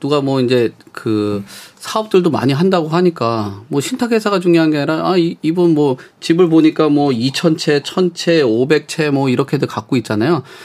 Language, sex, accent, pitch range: Korean, male, native, 120-170 Hz